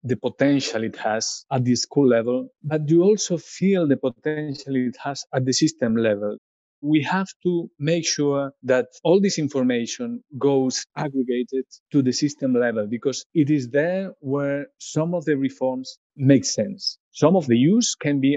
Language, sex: English, male